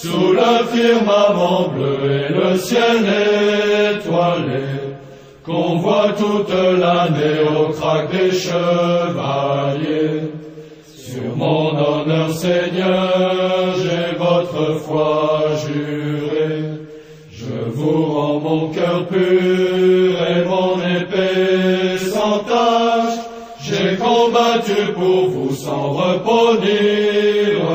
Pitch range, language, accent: 150-185 Hz, French, French